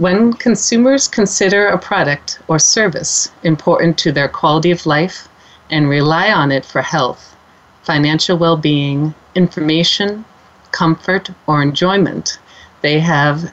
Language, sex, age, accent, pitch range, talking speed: English, female, 40-59, American, 145-175 Hz, 120 wpm